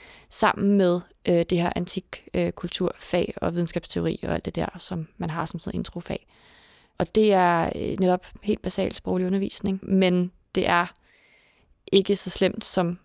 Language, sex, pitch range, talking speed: Danish, female, 175-195 Hz, 160 wpm